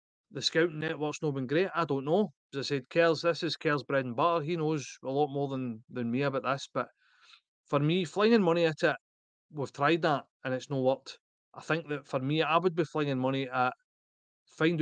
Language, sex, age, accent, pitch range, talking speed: English, male, 30-49, British, 130-160 Hz, 225 wpm